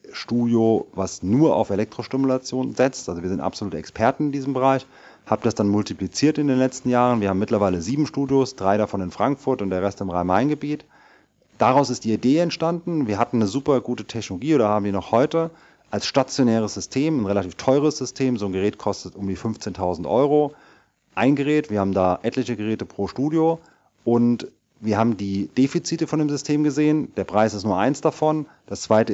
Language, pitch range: German, 100-140 Hz